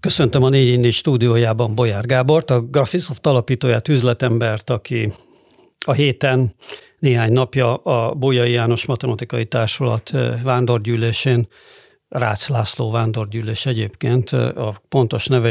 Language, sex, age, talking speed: Hungarian, male, 60-79, 110 wpm